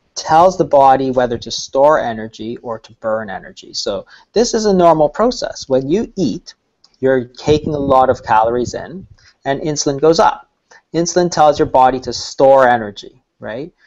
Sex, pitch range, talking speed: male, 130-180 Hz, 170 wpm